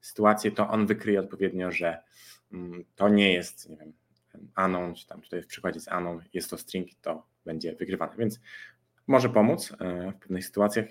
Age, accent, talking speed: 20-39, native, 170 wpm